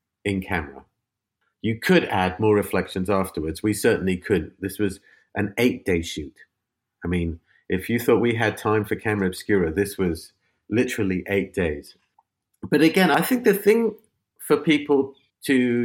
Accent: British